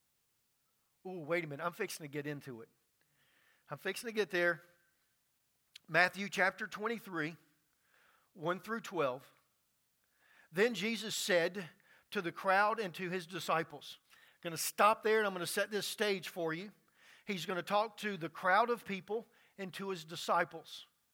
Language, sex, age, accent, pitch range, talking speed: English, male, 40-59, American, 170-215 Hz, 165 wpm